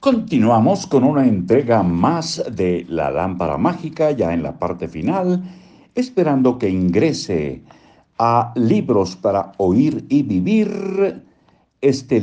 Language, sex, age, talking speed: Spanish, male, 60-79, 120 wpm